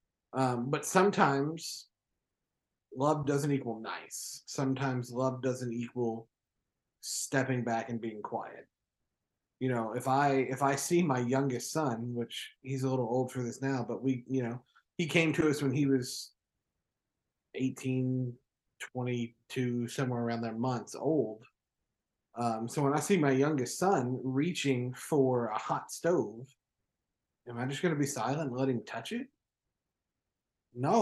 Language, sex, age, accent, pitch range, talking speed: English, male, 30-49, American, 125-150 Hz, 150 wpm